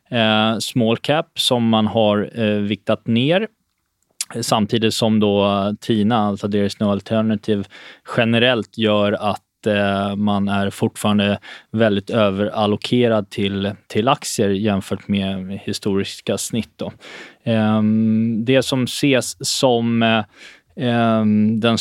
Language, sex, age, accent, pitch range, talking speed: Swedish, male, 20-39, native, 105-120 Hz, 110 wpm